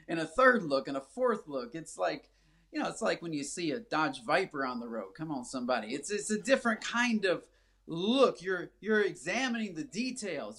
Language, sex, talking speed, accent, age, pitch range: English, male, 215 wpm, American, 30-49, 170-255 Hz